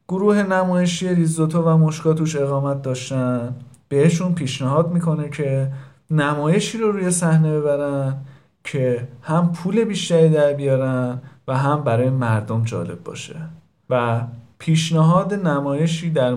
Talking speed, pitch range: 115 wpm, 130-175 Hz